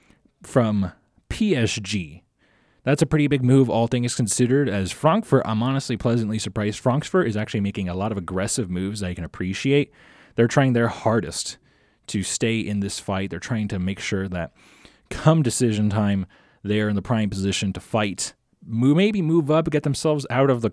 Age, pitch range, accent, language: 20-39, 100-130 Hz, American, English